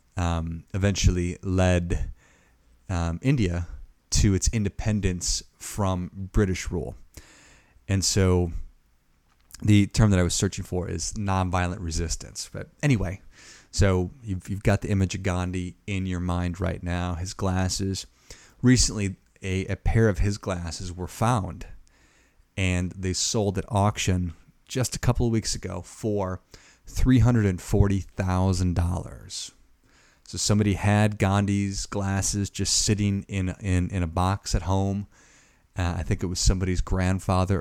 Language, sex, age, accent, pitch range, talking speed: English, male, 30-49, American, 90-100 Hz, 130 wpm